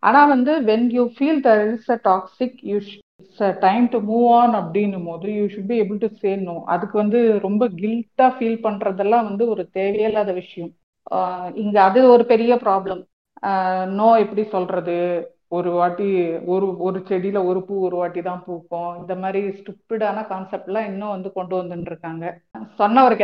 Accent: native